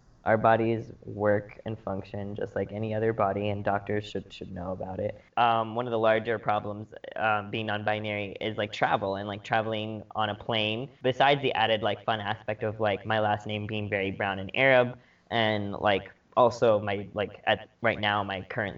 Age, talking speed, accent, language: 20-39, 195 wpm, American, English